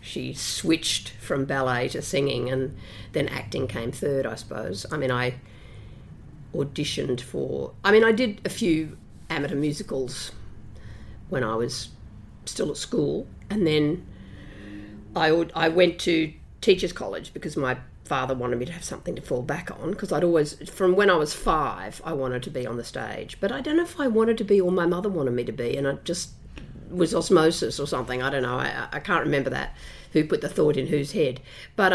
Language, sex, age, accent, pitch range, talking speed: English, female, 50-69, Australian, 115-180 Hz, 200 wpm